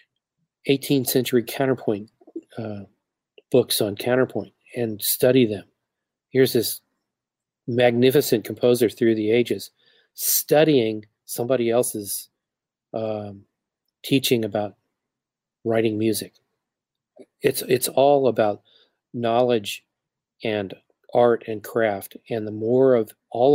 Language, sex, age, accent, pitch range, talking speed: English, male, 40-59, American, 110-130 Hz, 100 wpm